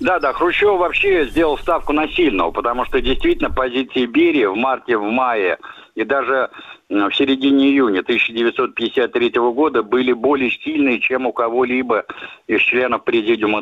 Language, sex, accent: Russian, male, native